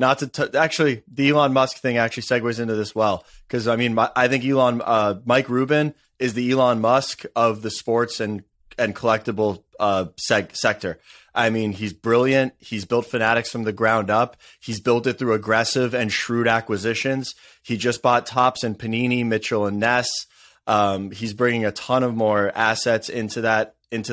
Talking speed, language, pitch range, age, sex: 175 wpm, English, 110-125 Hz, 20-39, male